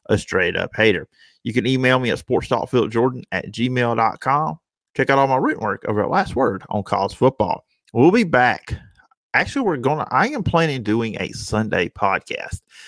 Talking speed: 185 wpm